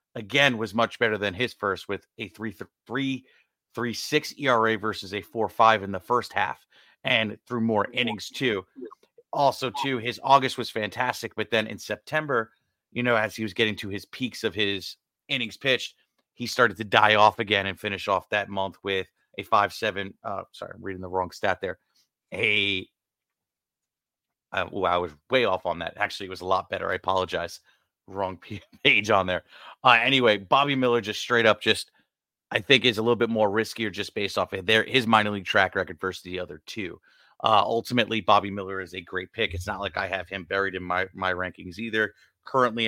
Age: 30-49